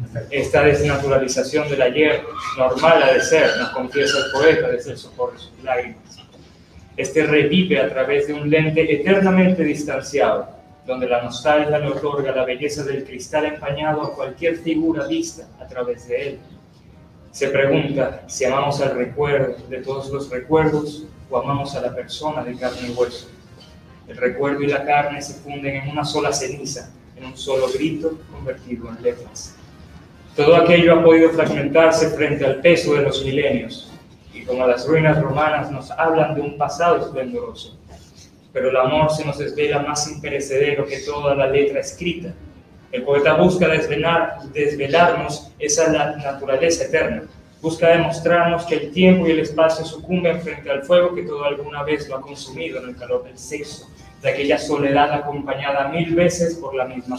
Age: 30-49